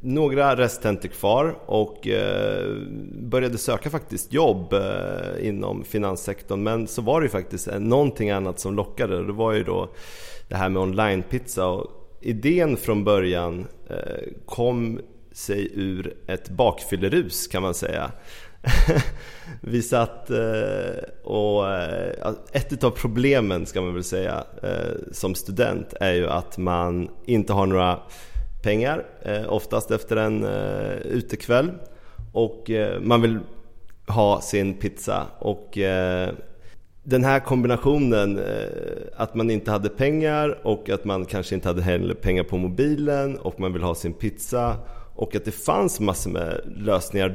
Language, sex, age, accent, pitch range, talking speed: Swedish, male, 30-49, native, 95-125 Hz, 125 wpm